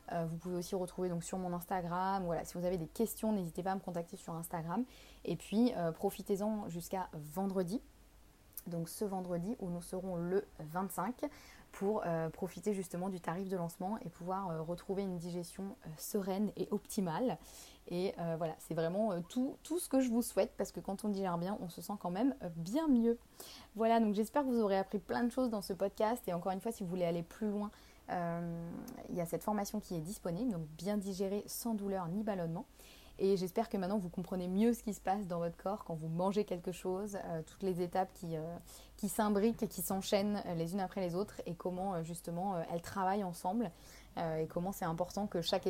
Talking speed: 215 wpm